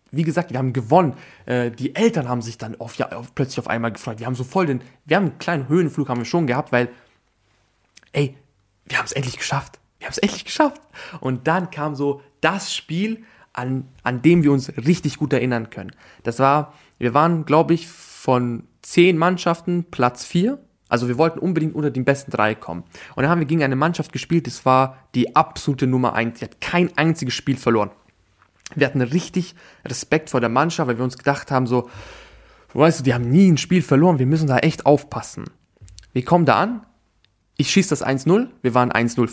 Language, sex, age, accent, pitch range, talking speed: German, male, 20-39, German, 125-160 Hz, 205 wpm